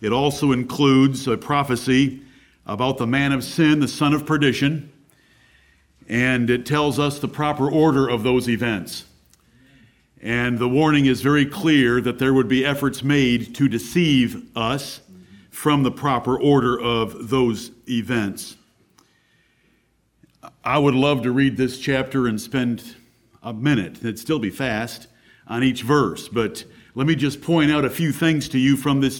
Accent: American